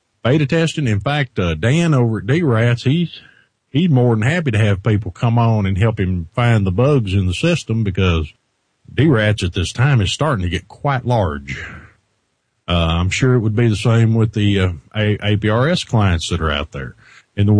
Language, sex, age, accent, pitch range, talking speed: English, male, 50-69, American, 90-120 Hz, 200 wpm